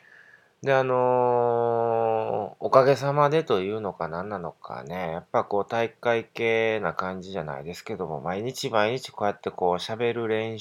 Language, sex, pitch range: Japanese, male, 90-125 Hz